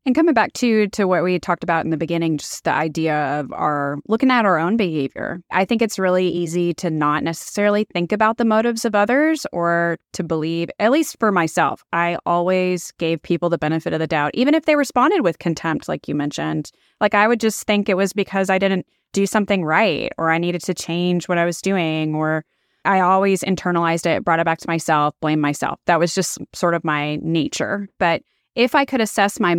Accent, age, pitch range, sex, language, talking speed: American, 20-39, 165-200 Hz, female, English, 220 wpm